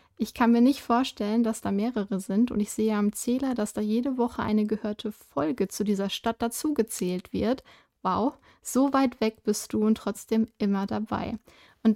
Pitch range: 210-245 Hz